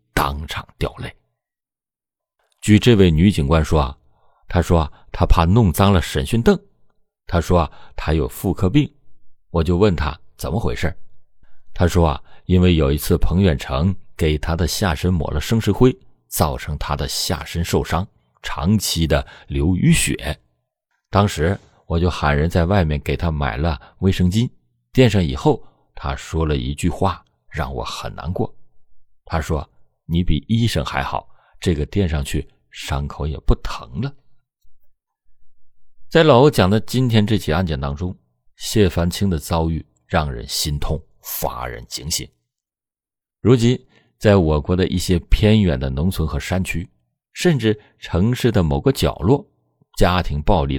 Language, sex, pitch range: Chinese, male, 75-100 Hz